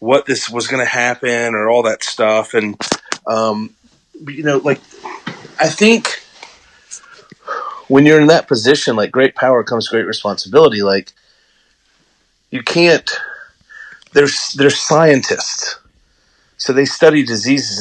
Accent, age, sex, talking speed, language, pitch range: American, 30-49, male, 130 wpm, English, 110-150 Hz